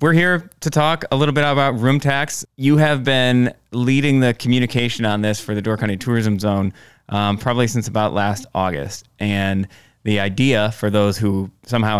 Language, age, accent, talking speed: English, 20-39, American, 185 wpm